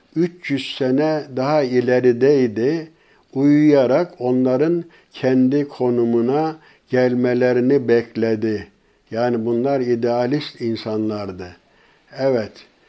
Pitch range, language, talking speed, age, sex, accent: 115-135 Hz, Turkish, 70 wpm, 60-79, male, native